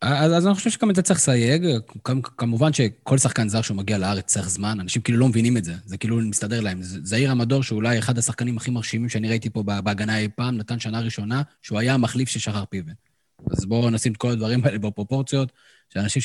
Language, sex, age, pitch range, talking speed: Hebrew, male, 20-39, 100-125 Hz, 220 wpm